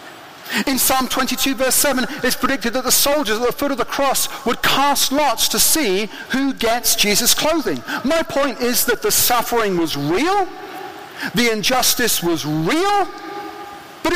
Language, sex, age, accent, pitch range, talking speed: English, male, 50-69, British, 225-330 Hz, 160 wpm